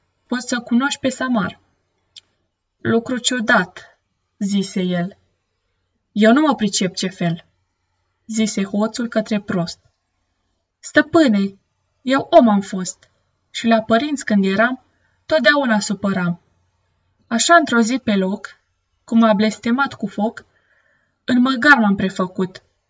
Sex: female